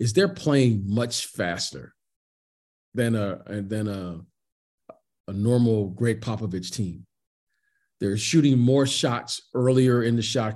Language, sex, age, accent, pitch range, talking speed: English, male, 40-59, American, 115-160 Hz, 115 wpm